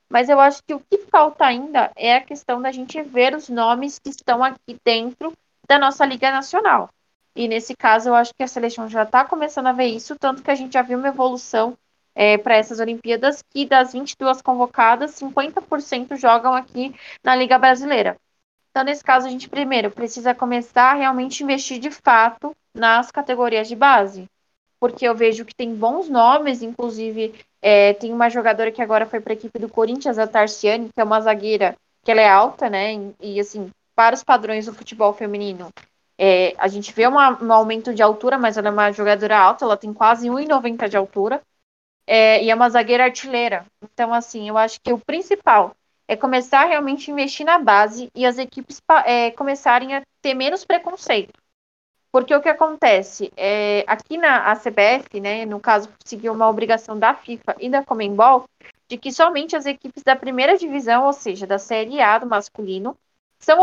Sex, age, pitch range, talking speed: female, 20-39, 220-275 Hz, 190 wpm